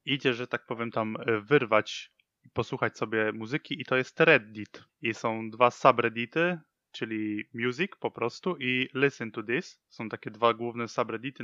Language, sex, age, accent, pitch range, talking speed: Polish, male, 20-39, native, 110-125 Hz, 165 wpm